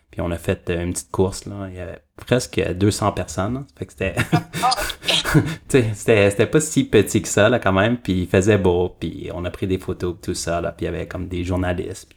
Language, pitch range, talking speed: French, 90-110 Hz, 225 wpm